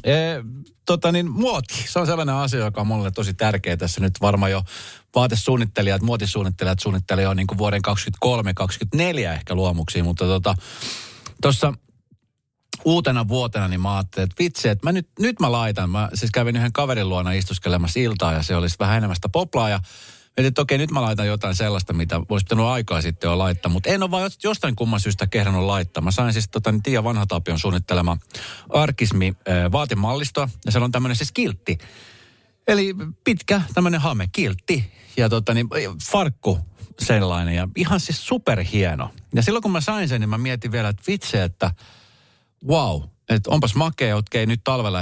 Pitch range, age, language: 95-130 Hz, 30-49, Finnish